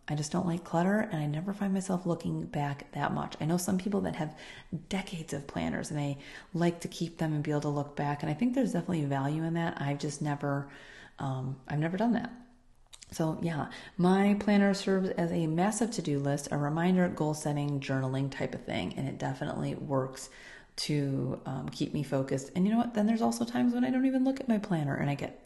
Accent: American